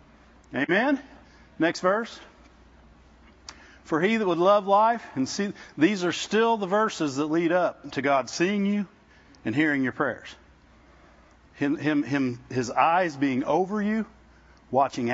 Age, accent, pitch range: 50-69, American, 130-200 Hz